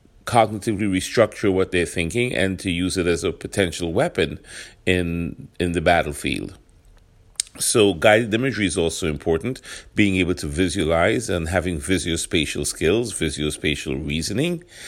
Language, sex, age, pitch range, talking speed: English, male, 40-59, 85-105 Hz, 135 wpm